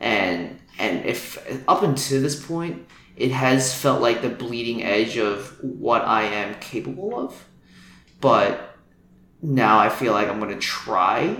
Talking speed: 155 wpm